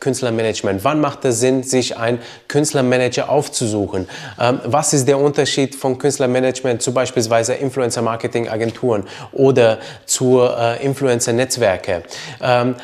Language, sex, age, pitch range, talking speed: German, male, 20-39, 120-140 Hz, 110 wpm